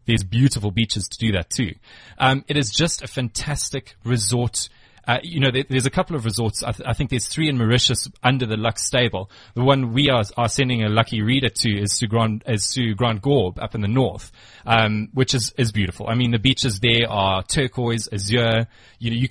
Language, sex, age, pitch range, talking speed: English, male, 20-39, 110-135 Hz, 225 wpm